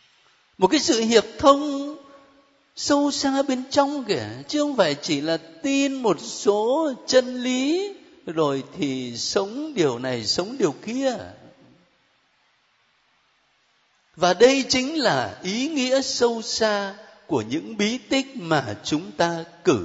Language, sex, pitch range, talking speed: Vietnamese, male, 165-270 Hz, 135 wpm